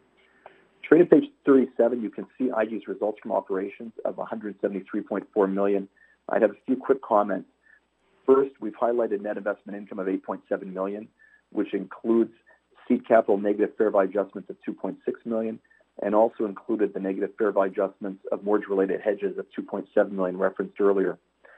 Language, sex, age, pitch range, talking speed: English, male, 40-59, 95-110 Hz, 155 wpm